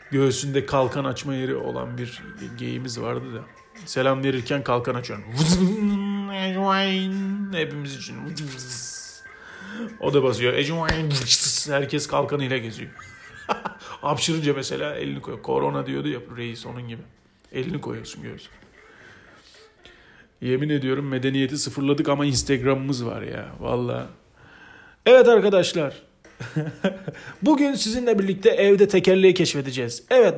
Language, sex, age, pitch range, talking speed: Turkish, male, 40-59, 135-200 Hz, 105 wpm